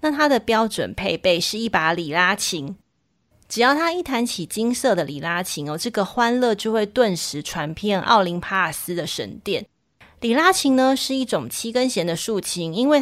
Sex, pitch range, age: female, 180-250 Hz, 30-49